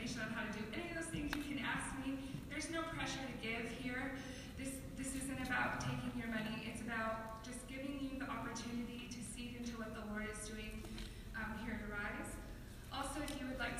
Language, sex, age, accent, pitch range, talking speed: English, female, 20-39, American, 205-240 Hz, 215 wpm